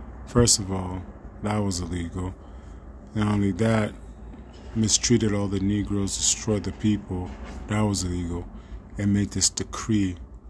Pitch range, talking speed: 70-100 Hz, 130 wpm